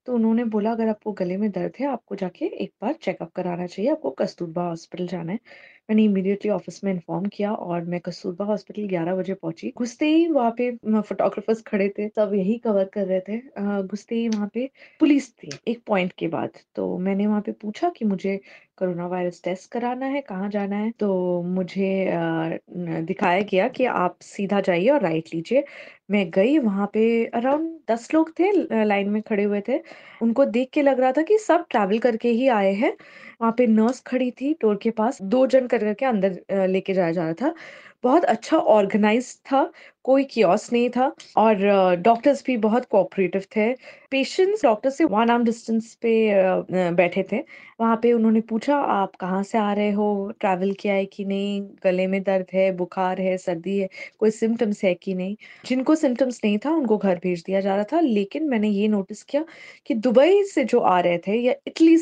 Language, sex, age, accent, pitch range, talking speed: Hindi, female, 20-39, native, 195-255 Hz, 195 wpm